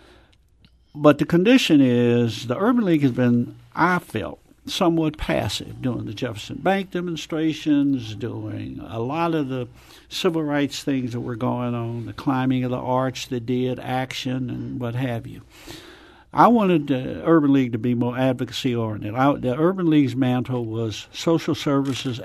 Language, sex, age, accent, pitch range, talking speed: English, male, 60-79, American, 125-155 Hz, 155 wpm